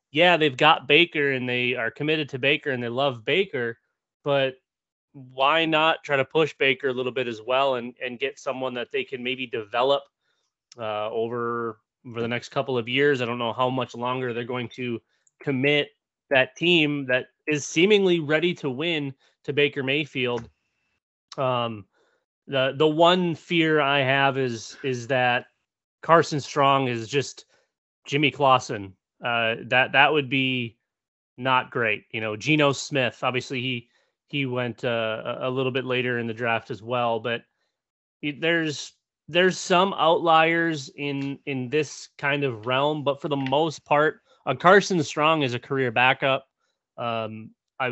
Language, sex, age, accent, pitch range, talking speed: English, male, 20-39, American, 125-145 Hz, 165 wpm